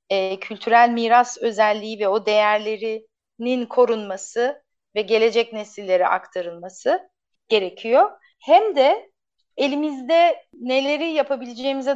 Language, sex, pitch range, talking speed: Turkish, female, 215-285 Hz, 85 wpm